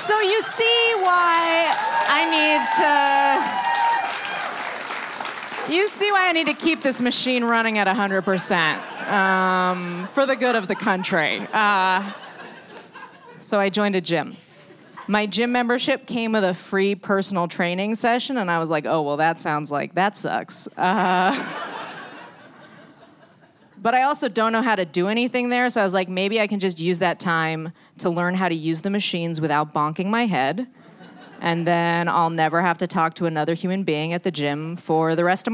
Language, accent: English, American